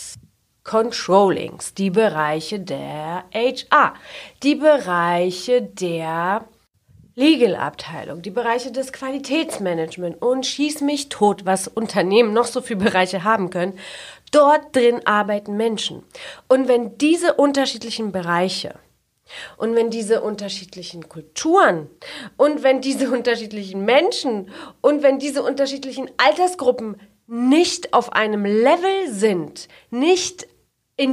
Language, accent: German, German